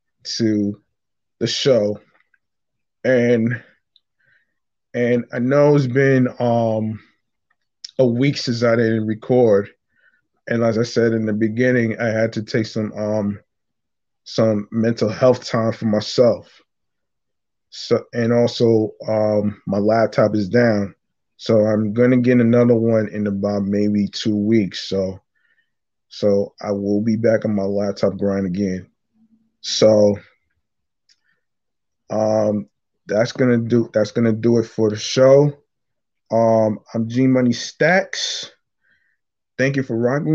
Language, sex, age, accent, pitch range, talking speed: English, male, 20-39, American, 110-125 Hz, 130 wpm